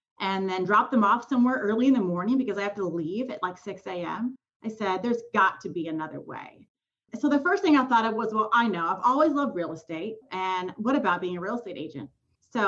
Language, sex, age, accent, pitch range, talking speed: English, female, 30-49, American, 185-260 Hz, 245 wpm